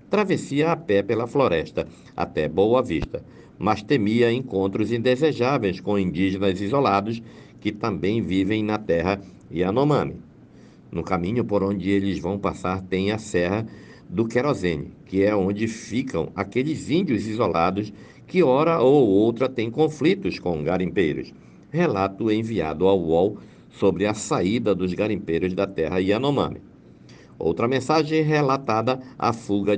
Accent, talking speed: Brazilian, 130 wpm